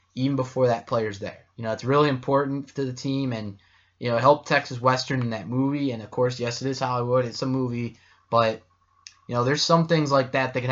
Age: 20-39